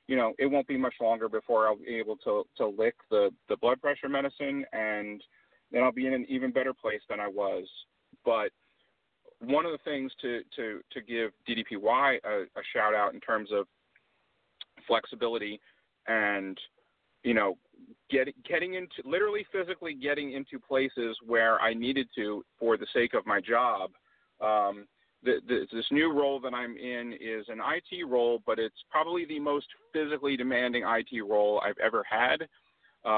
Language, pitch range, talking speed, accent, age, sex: English, 110-140 Hz, 170 wpm, American, 40-59, male